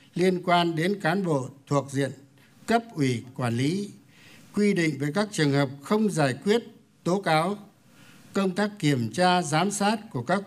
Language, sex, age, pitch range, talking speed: Vietnamese, male, 60-79, 140-190 Hz, 170 wpm